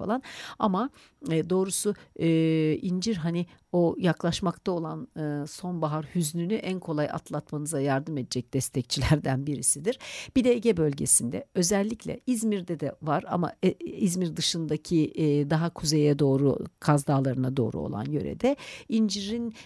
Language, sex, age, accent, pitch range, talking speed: Turkish, female, 60-79, native, 135-185 Hz, 125 wpm